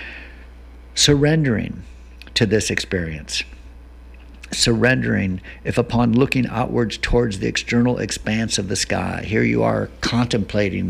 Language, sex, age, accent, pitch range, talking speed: English, male, 60-79, American, 85-115 Hz, 110 wpm